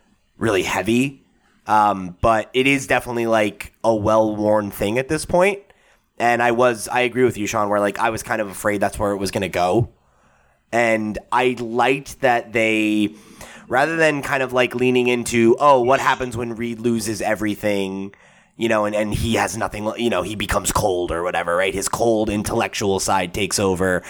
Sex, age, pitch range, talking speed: male, 20-39, 105-130 Hz, 190 wpm